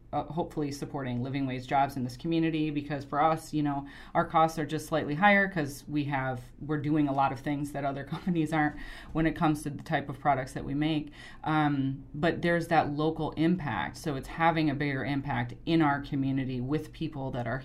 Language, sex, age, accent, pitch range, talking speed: English, female, 30-49, American, 140-160 Hz, 210 wpm